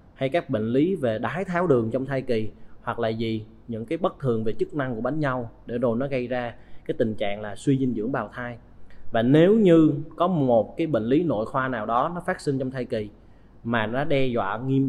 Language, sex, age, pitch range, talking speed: Vietnamese, male, 20-39, 110-140 Hz, 245 wpm